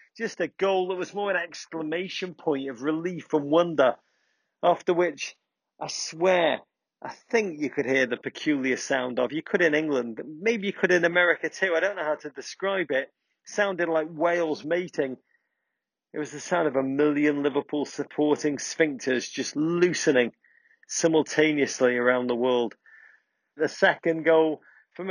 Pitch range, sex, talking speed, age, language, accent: 130-175 Hz, male, 160 wpm, 40-59, English, British